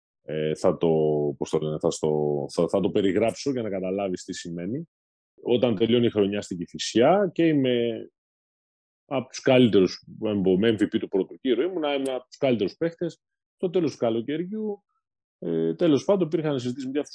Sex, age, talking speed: male, 30-49, 155 wpm